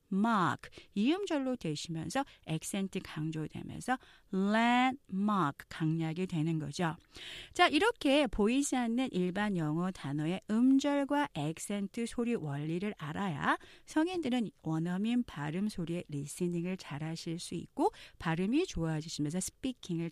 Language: Korean